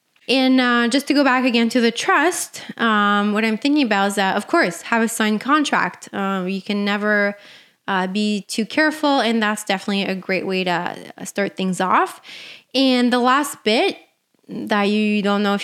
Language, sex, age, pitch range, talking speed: English, female, 20-39, 200-245 Hz, 190 wpm